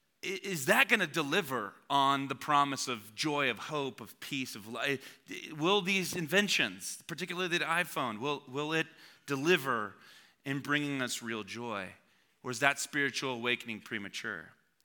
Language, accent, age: English, American, 30-49